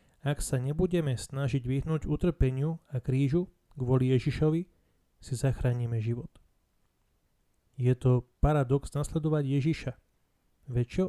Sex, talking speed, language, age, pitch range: male, 105 wpm, Slovak, 30-49, 125-155 Hz